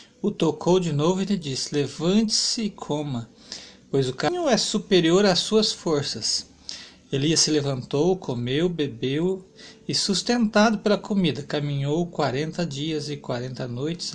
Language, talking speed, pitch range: Portuguese, 140 wpm, 150-200 Hz